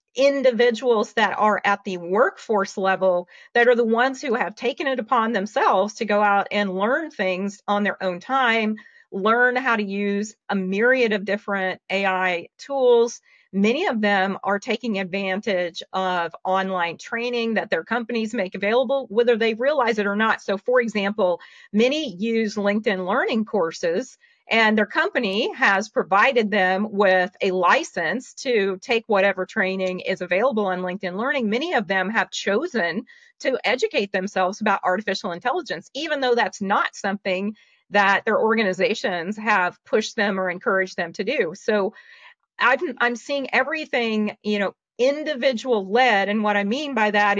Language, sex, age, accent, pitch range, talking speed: English, female, 40-59, American, 195-245 Hz, 155 wpm